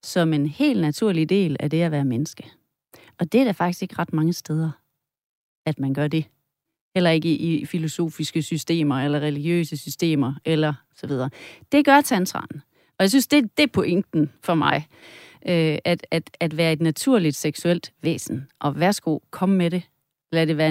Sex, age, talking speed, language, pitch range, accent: female, 30-49, 185 wpm, Danish, 155-190 Hz, native